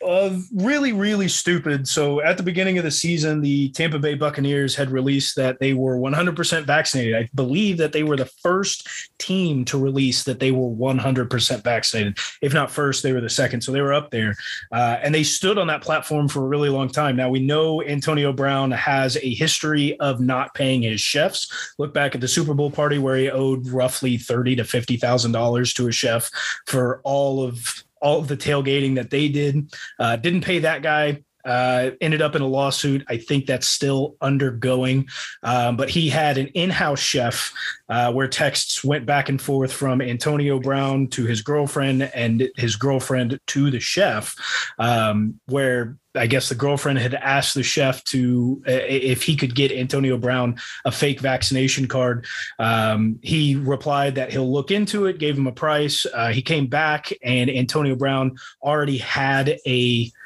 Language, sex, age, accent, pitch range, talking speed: English, male, 30-49, American, 130-150 Hz, 185 wpm